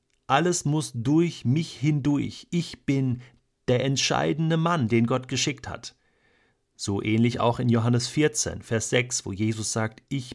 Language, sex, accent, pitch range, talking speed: German, male, German, 115-145 Hz, 150 wpm